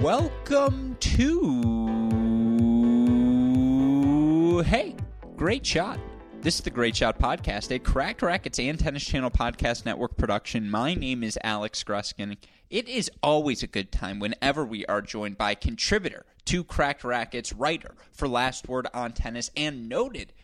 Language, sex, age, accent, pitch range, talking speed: English, male, 20-39, American, 110-140 Hz, 145 wpm